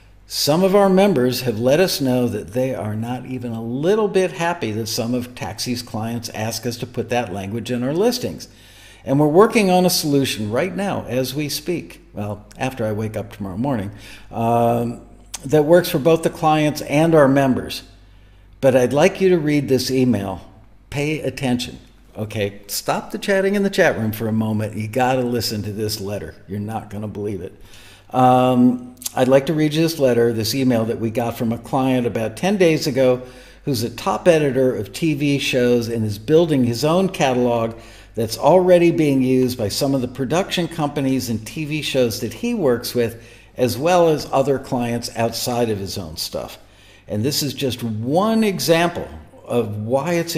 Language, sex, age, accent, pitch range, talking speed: English, male, 50-69, American, 110-145 Hz, 190 wpm